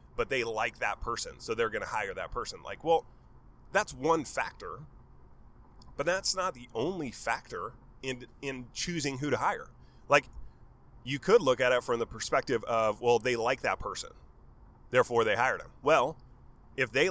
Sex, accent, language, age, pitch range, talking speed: male, American, English, 30-49, 125-150 Hz, 175 wpm